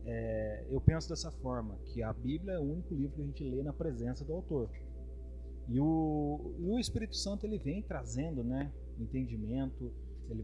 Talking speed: 170 wpm